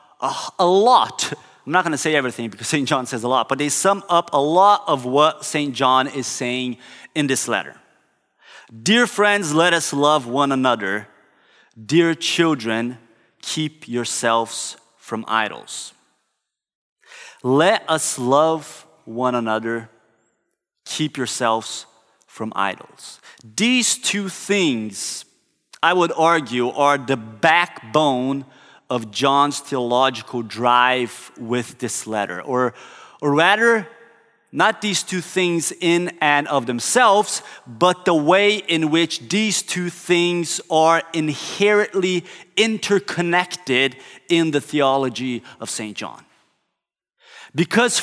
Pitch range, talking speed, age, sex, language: 125-175 Hz, 120 wpm, 30-49, male, English